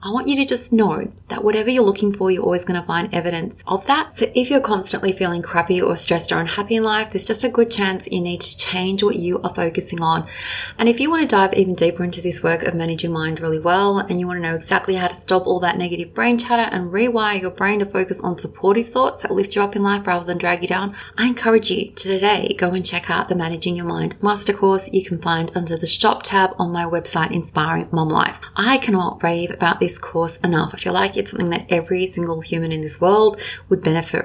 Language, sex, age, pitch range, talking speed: English, female, 20-39, 175-215 Hz, 255 wpm